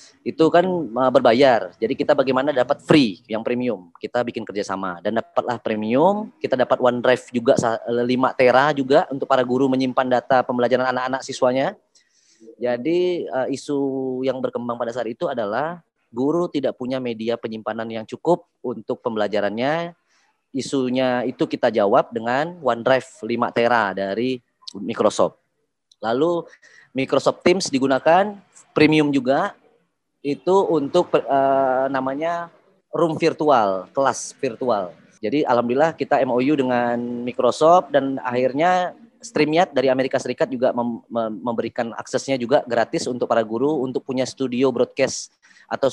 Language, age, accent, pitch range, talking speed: Indonesian, 30-49, native, 120-145 Hz, 130 wpm